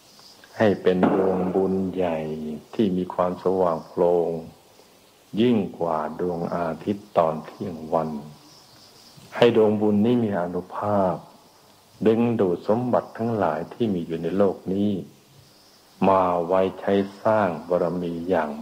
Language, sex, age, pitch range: Thai, male, 60-79, 85-105 Hz